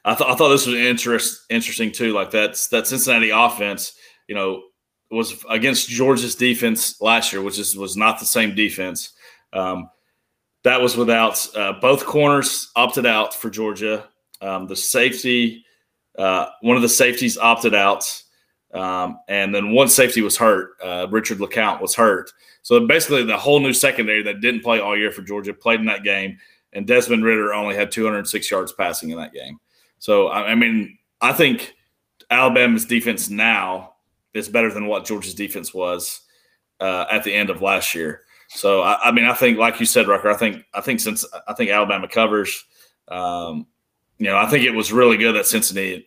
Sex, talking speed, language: male, 185 wpm, English